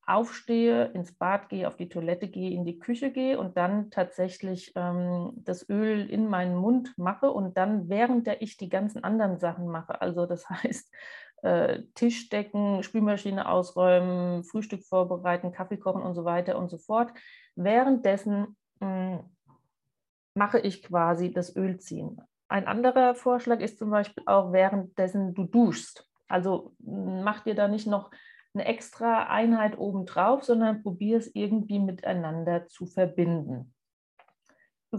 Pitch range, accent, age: 180-230 Hz, German, 30-49